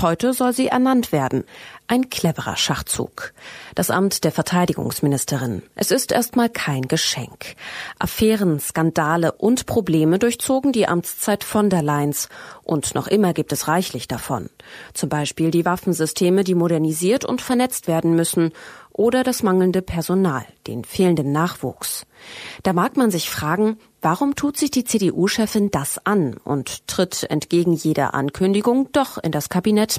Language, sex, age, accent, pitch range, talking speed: German, female, 30-49, German, 160-225 Hz, 145 wpm